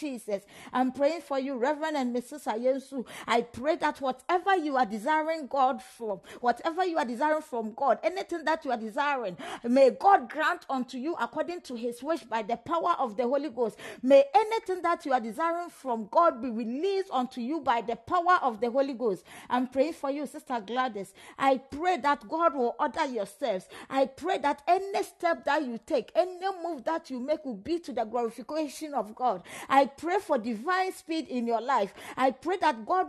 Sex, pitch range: female, 250-325 Hz